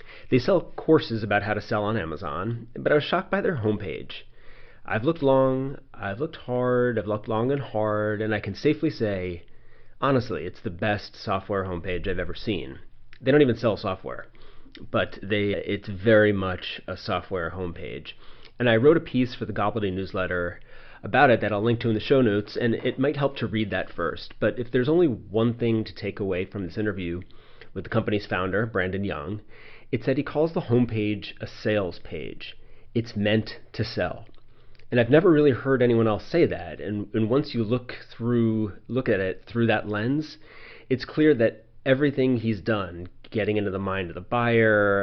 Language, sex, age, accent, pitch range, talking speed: English, male, 30-49, American, 100-120 Hz, 195 wpm